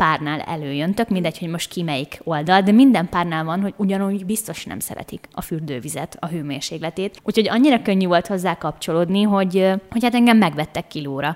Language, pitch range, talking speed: Hungarian, 155-200 Hz, 170 wpm